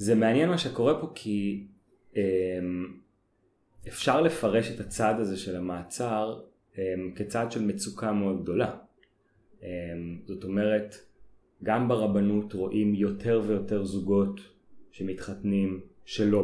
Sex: male